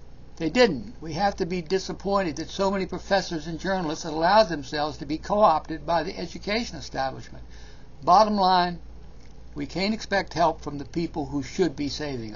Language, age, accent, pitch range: English, 60-79, American, 130-180 Hz